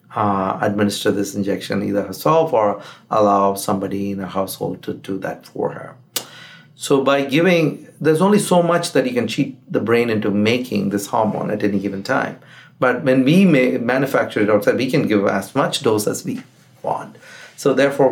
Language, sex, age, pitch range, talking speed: English, male, 50-69, 100-135 Hz, 180 wpm